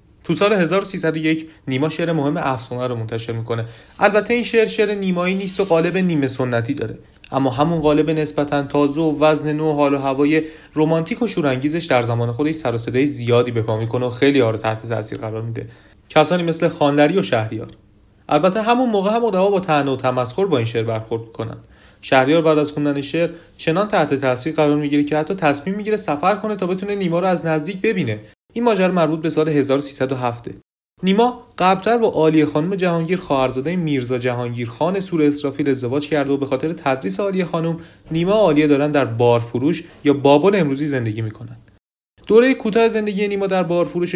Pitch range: 130-180 Hz